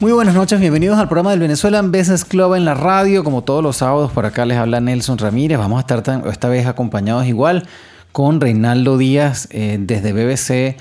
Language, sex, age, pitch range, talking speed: English, male, 30-49, 110-135 Hz, 205 wpm